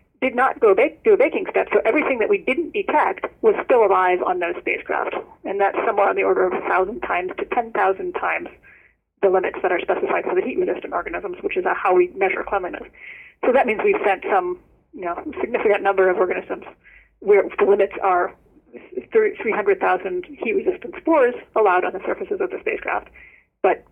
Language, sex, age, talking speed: English, female, 40-59, 205 wpm